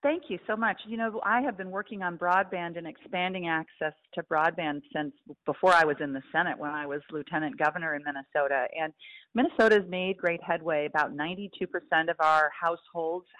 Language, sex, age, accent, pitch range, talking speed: English, female, 40-59, American, 160-200 Hz, 190 wpm